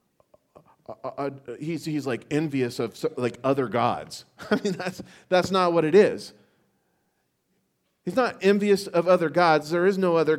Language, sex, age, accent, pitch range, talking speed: English, male, 40-59, American, 150-200 Hz, 170 wpm